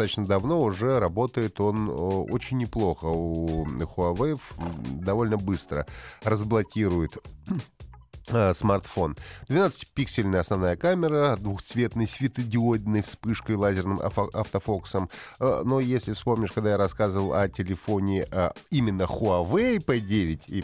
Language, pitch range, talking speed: Russian, 85-120 Hz, 95 wpm